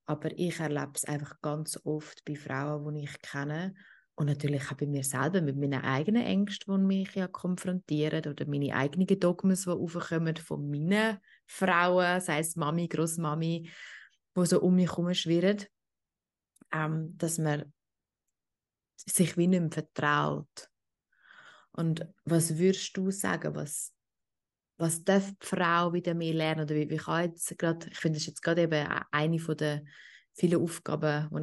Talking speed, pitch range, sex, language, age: 150 wpm, 150-180 Hz, female, German, 20-39